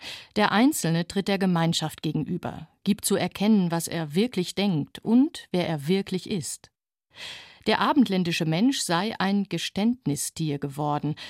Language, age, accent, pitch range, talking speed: German, 50-69, German, 170-215 Hz, 135 wpm